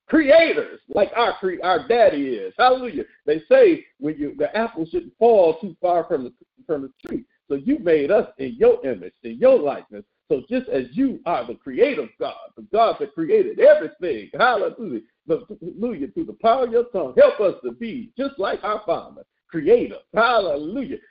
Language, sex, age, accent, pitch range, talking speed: English, male, 50-69, American, 215-360 Hz, 180 wpm